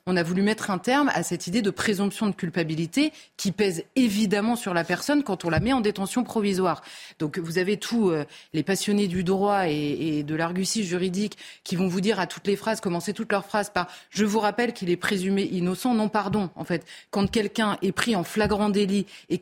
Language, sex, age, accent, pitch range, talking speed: French, female, 30-49, French, 180-230 Hz, 220 wpm